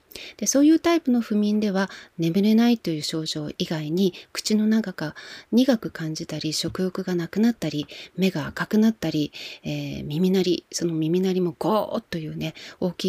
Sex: female